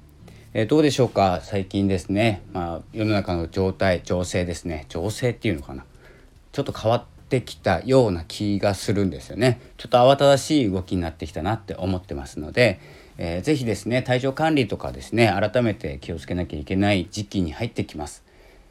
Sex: male